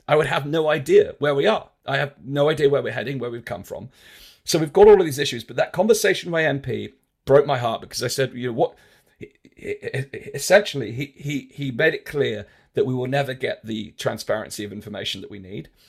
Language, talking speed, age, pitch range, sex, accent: English, 225 wpm, 40-59, 115-150 Hz, male, British